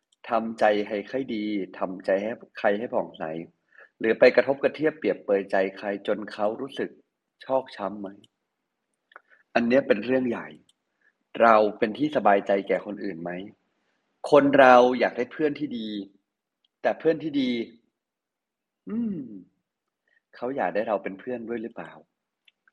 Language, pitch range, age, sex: Thai, 100-125 Hz, 30-49, male